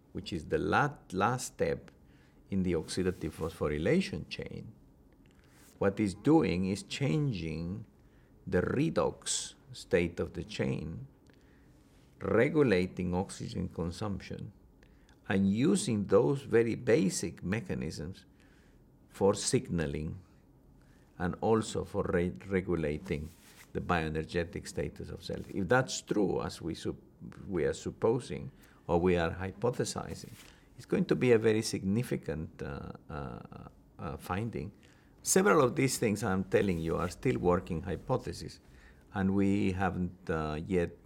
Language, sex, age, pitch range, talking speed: English, male, 50-69, 80-105 Hz, 120 wpm